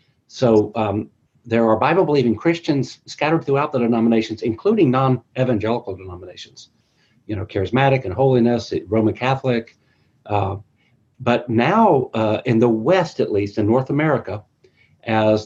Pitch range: 110-135 Hz